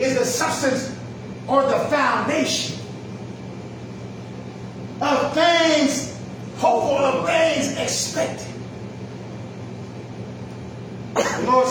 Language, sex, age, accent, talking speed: English, male, 30-49, American, 65 wpm